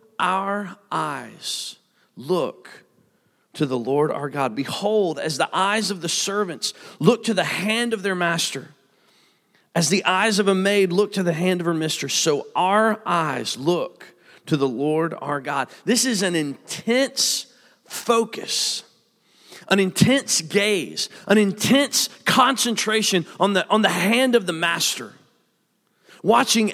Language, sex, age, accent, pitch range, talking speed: English, male, 40-59, American, 150-220 Hz, 145 wpm